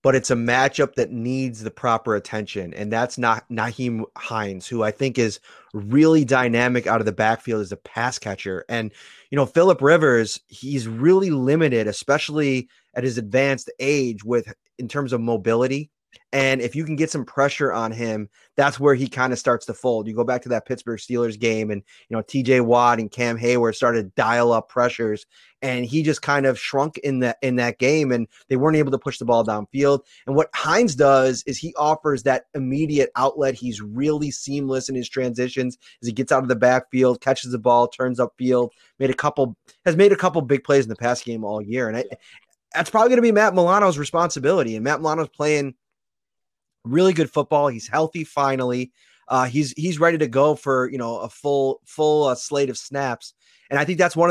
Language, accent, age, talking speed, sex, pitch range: English, American, 20-39, 210 wpm, male, 120-150 Hz